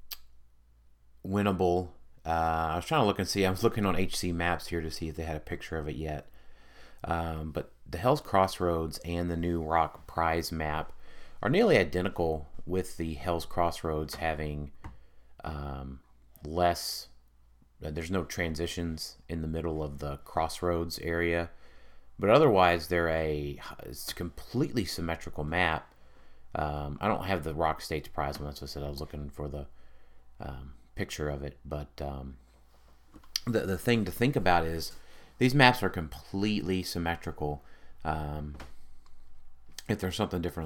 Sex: male